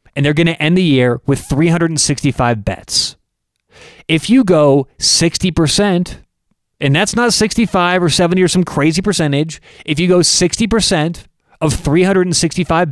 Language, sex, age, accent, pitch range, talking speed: English, male, 30-49, American, 140-185 Hz, 140 wpm